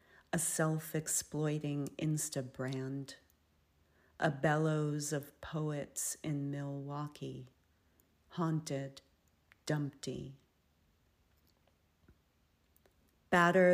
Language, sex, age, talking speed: English, female, 40-59, 50 wpm